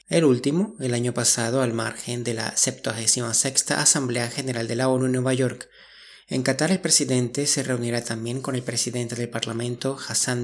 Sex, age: male, 20-39